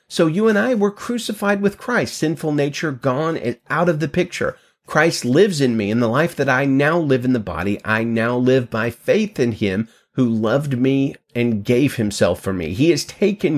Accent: American